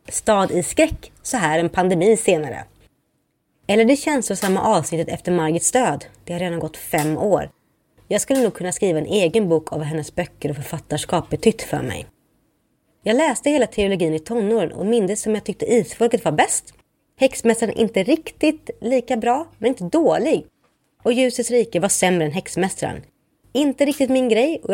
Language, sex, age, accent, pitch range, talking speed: Swedish, female, 30-49, native, 175-260 Hz, 180 wpm